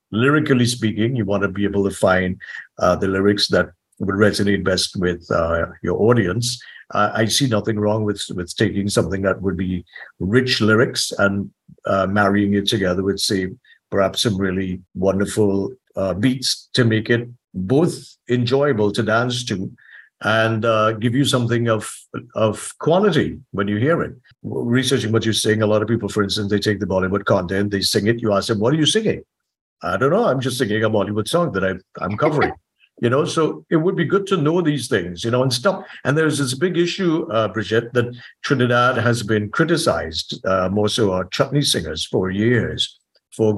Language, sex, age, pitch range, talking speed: English, male, 50-69, 100-130 Hz, 195 wpm